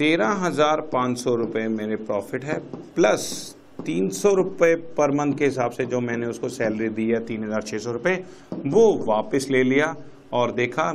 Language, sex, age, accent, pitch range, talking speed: Hindi, male, 50-69, native, 110-150 Hz, 150 wpm